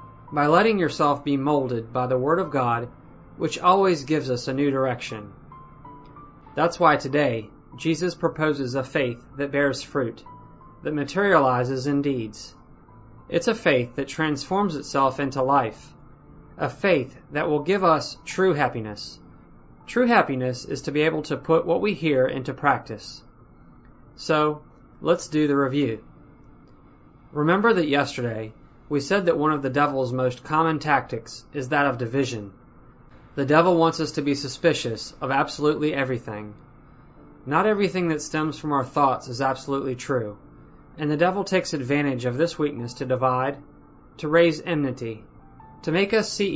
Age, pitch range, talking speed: 30-49, 130-155 Hz, 155 wpm